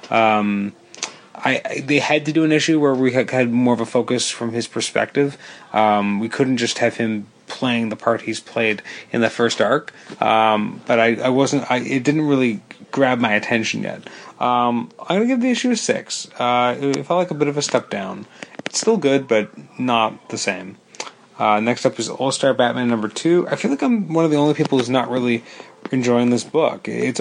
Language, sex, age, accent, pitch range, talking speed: English, male, 30-49, American, 110-135 Hz, 215 wpm